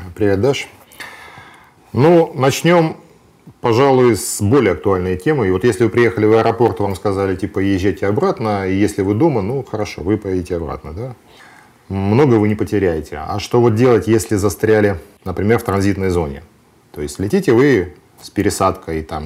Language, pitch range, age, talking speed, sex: Russian, 95-120 Hz, 40-59, 160 wpm, male